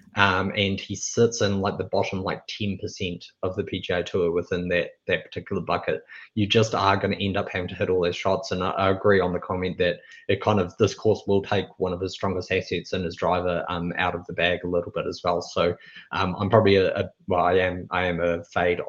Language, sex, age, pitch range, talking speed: English, male, 20-39, 95-110 Hz, 250 wpm